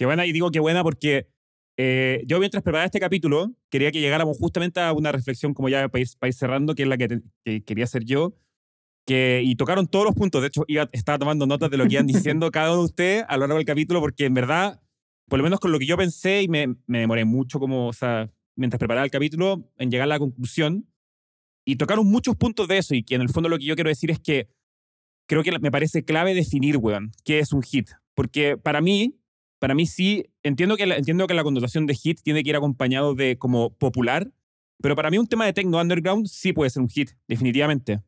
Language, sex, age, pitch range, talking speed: Spanish, male, 30-49, 130-175 Hz, 245 wpm